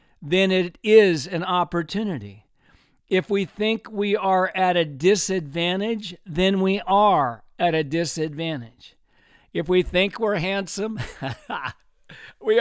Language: English